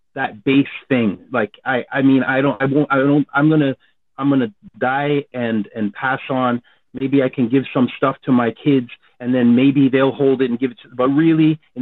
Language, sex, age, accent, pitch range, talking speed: English, male, 30-49, American, 115-140 Hz, 235 wpm